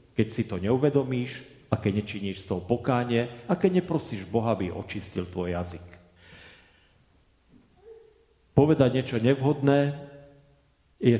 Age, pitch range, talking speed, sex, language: 40-59, 95-125 Hz, 120 wpm, male, Slovak